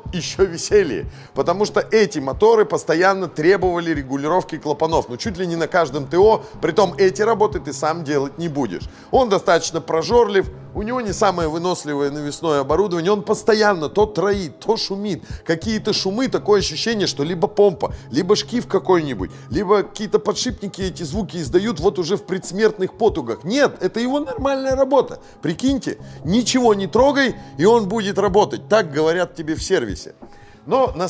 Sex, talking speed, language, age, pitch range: male, 160 wpm, Russian, 30-49, 155-215 Hz